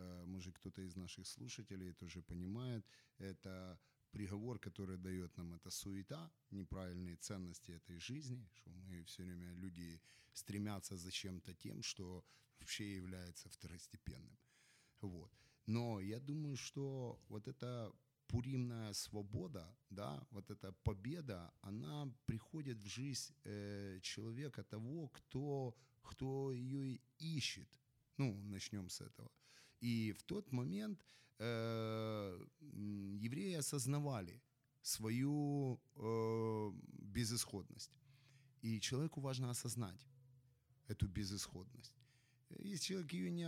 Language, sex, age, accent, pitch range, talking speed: Ukrainian, male, 30-49, native, 100-130 Hz, 105 wpm